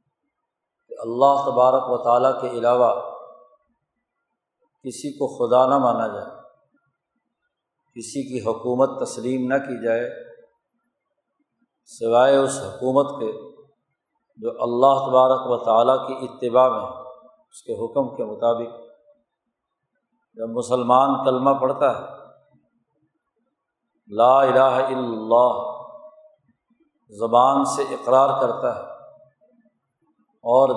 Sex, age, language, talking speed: male, 50-69, Urdu, 100 wpm